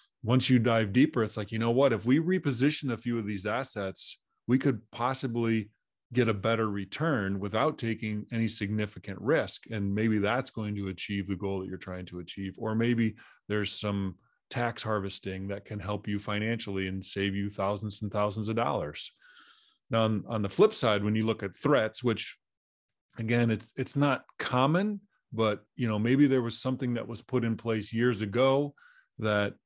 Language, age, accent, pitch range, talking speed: English, 30-49, American, 100-120 Hz, 185 wpm